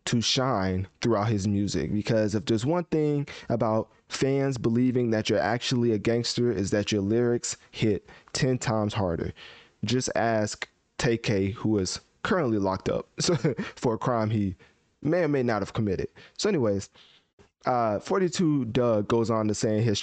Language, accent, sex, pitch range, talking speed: English, American, male, 105-145 Hz, 170 wpm